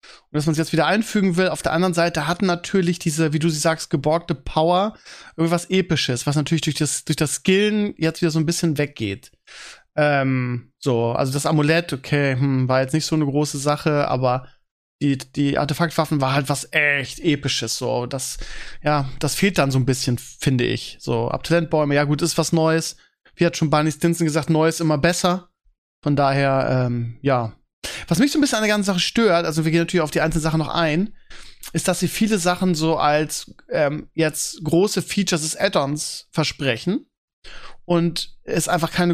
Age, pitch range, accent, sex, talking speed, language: 20-39, 145-175 Hz, German, male, 200 wpm, German